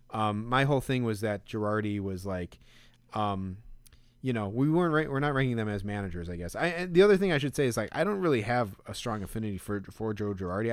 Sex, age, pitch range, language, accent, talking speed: male, 20-39, 100-130 Hz, English, American, 255 wpm